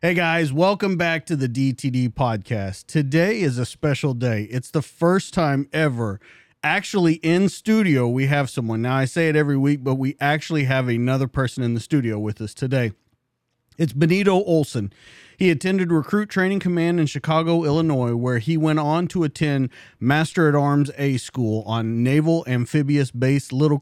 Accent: American